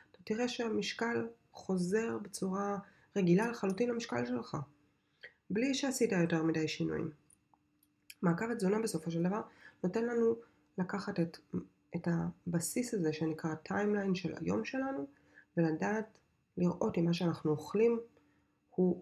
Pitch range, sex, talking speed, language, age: 155-195 Hz, female, 115 wpm, Hebrew, 20-39